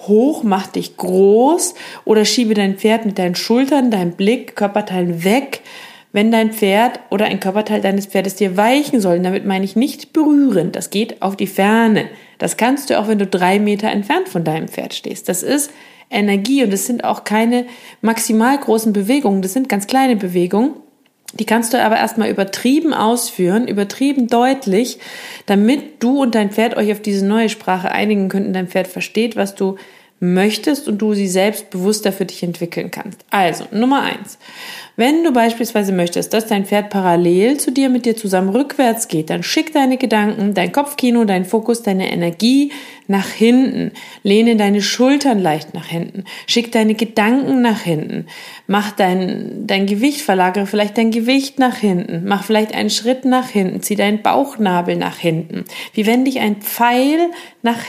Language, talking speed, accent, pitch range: German, 175 wpm, German, 195-250 Hz